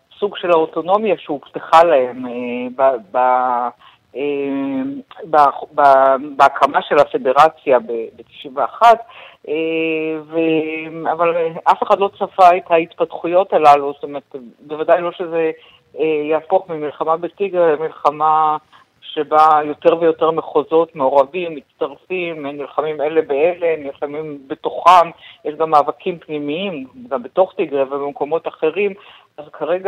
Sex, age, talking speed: female, 50-69, 115 wpm